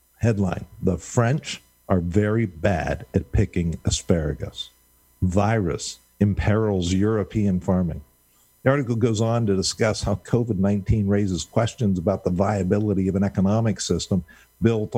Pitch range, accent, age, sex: 85-110 Hz, American, 50-69, male